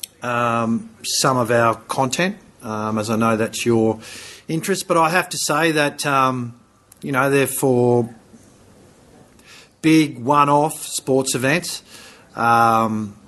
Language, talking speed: English, 125 wpm